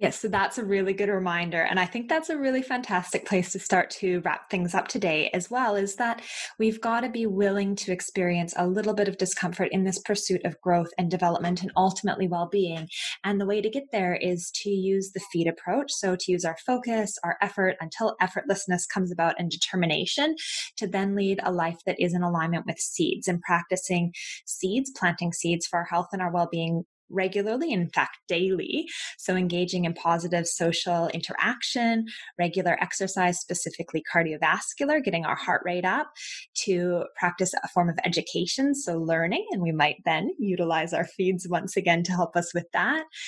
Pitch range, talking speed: 175-205 Hz, 190 wpm